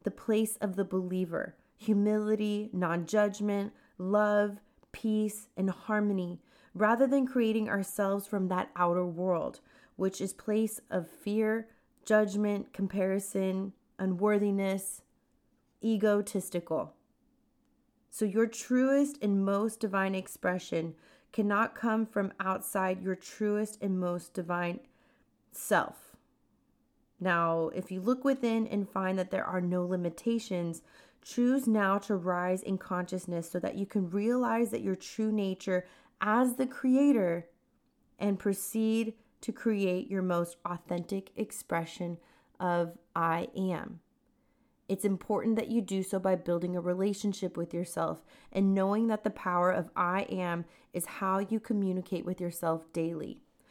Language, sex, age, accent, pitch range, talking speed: English, female, 30-49, American, 180-220 Hz, 125 wpm